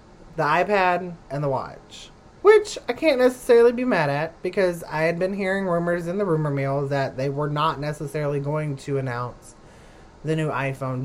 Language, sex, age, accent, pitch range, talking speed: English, male, 20-39, American, 130-200 Hz, 180 wpm